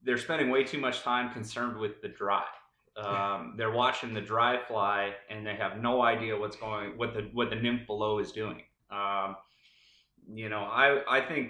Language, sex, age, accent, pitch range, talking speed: English, male, 30-49, American, 105-120 Hz, 195 wpm